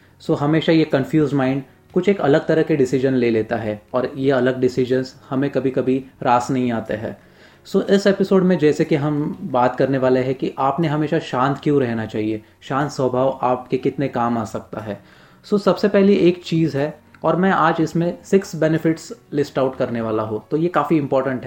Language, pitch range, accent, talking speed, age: Hindi, 125-150 Hz, native, 210 wpm, 30-49